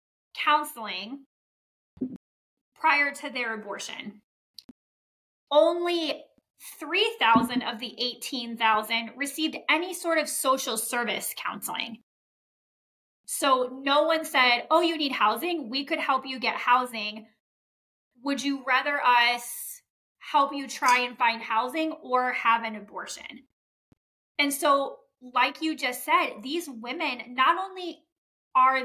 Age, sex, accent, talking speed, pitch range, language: 20-39, female, American, 115 wpm, 230-300 Hz, English